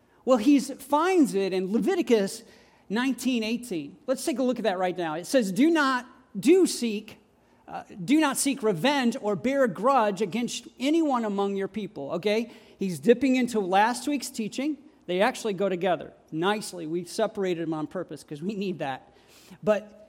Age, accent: 40-59, American